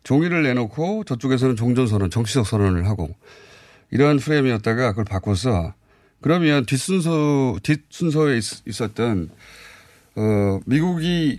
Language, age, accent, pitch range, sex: Korean, 30-49, native, 105-160 Hz, male